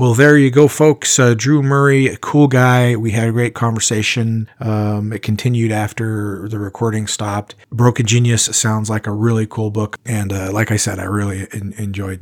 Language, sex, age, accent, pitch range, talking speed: English, male, 40-59, American, 105-125 Hz, 195 wpm